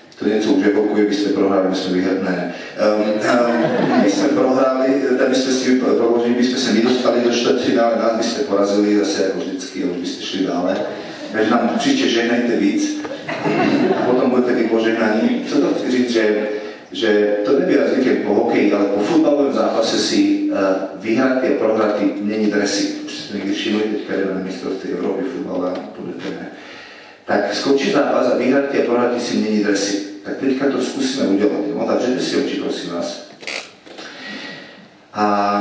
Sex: male